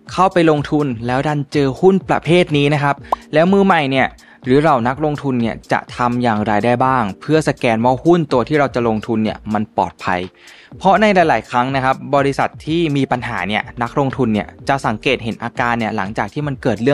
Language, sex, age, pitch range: Thai, male, 20-39, 115-155 Hz